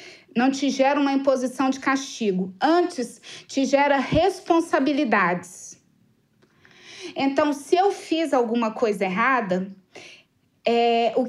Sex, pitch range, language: female, 240-320 Hz, Portuguese